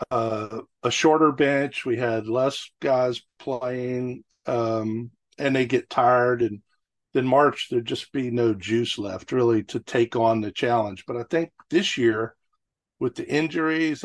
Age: 50-69